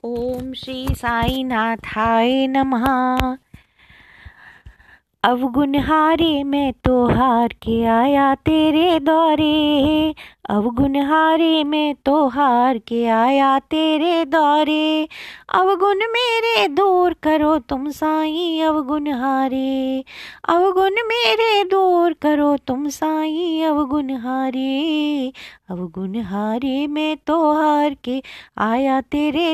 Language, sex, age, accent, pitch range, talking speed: Hindi, female, 20-39, native, 260-330 Hz, 85 wpm